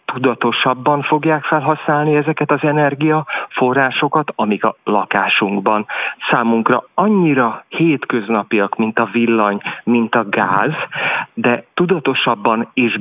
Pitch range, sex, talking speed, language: 115-145 Hz, male, 95 wpm, Hungarian